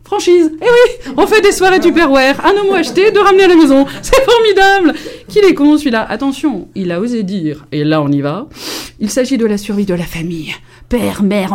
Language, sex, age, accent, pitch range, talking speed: French, female, 30-49, French, 200-310 Hz, 225 wpm